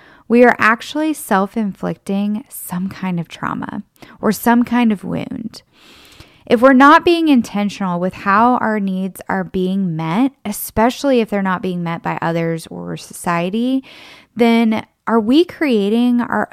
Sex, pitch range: female, 185-240 Hz